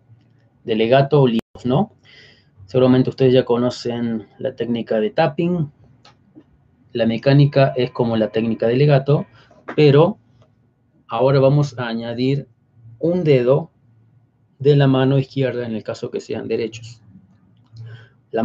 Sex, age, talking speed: male, 30-49, 125 wpm